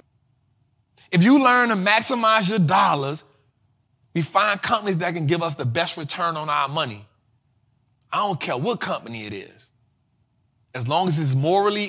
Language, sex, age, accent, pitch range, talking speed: English, male, 20-39, American, 125-185 Hz, 160 wpm